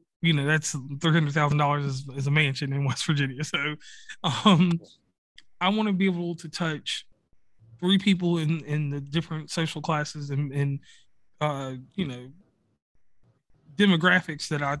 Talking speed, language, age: 140 wpm, English, 20-39